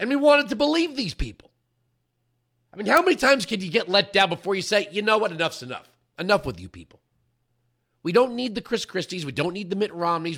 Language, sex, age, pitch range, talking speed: English, male, 40-59, 120-190 Hz, 235 wpm